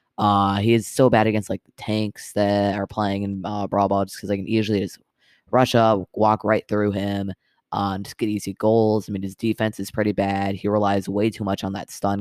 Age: 20-39